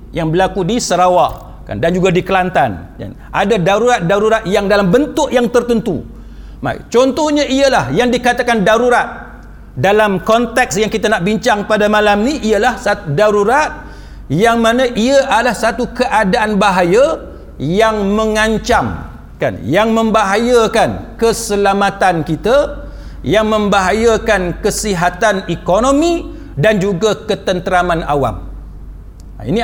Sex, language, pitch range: male, Malay, 190-240 Hz